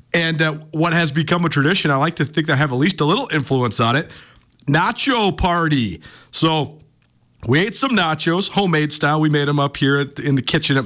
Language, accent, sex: English, American, male